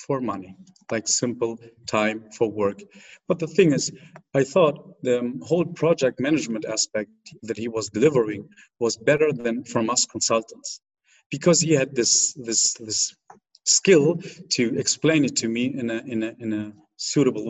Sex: male